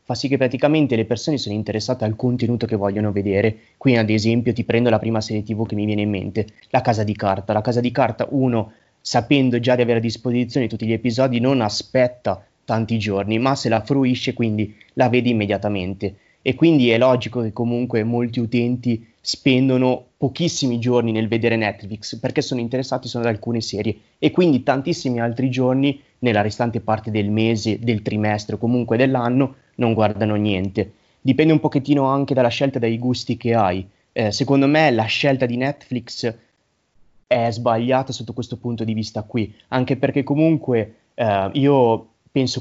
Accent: native